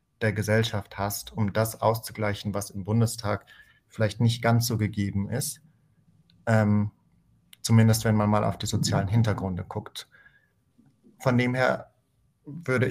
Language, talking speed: German, 135 wpm